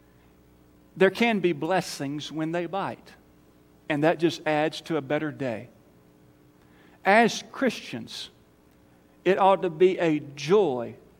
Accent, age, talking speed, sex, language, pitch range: American, 40-59, 125 wpm, male, English, 120-205 Hz